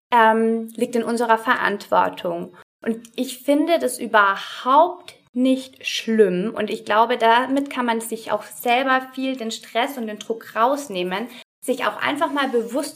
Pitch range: 220-275 Hz